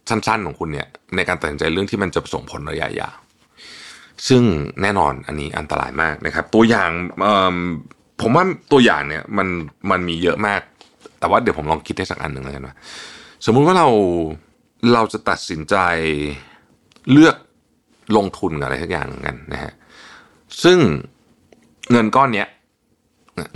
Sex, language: male, Thai